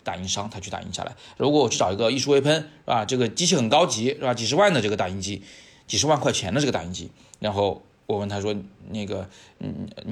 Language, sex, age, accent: Chinese, male, 20-39, native